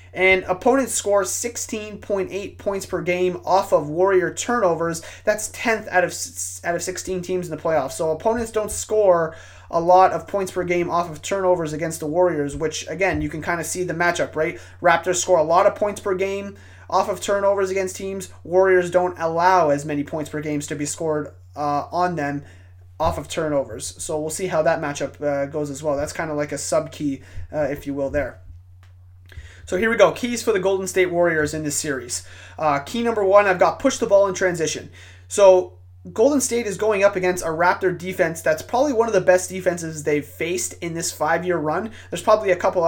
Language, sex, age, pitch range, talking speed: English, male, 30-49, 150-190 Hz, 210 wpm